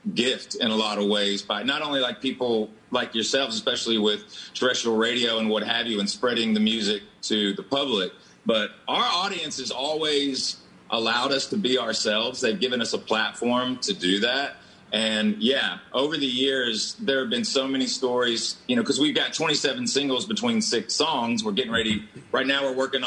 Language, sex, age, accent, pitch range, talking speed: English, male, 40-59, American, 110-135 Hz, 190 wpm